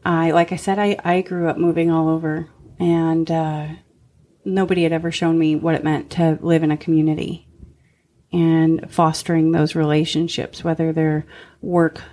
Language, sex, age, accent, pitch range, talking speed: English, female, 30-49, American, 155-170 Hz, 165 wpm